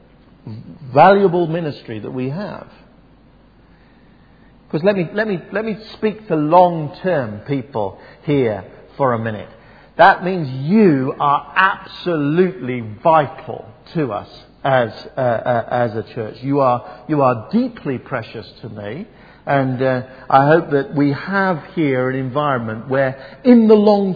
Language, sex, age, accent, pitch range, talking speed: English, male, 50-69, British, 130-185 Hz, 140 wpm